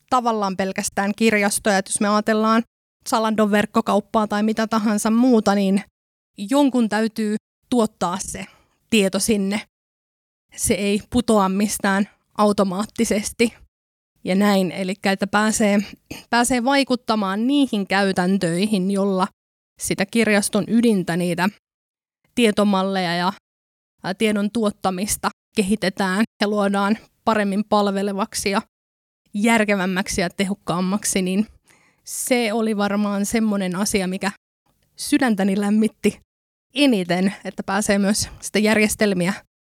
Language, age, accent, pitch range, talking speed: Finnish, 20-39, native, 190-220 Hz, 100 wpm